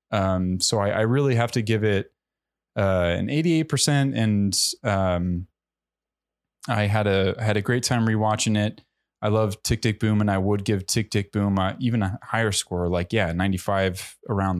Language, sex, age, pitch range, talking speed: English, male, 20-39, 95-110 Hz, 180 wpm